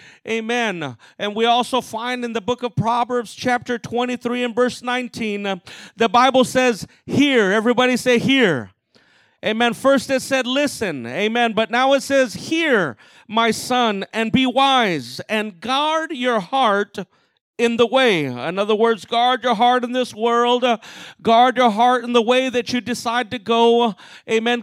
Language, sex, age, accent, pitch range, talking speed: English, male, 40-59, American, 225-265 Hz, 160 wpm